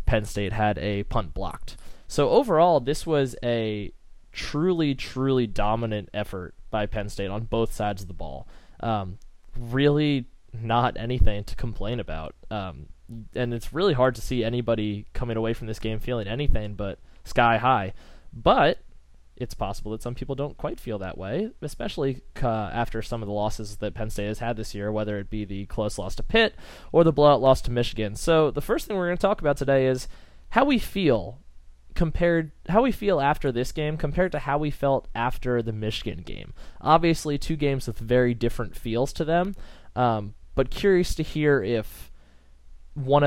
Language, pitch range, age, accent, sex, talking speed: English, 105-135 Hz, 20-39, American, male, 185 wpm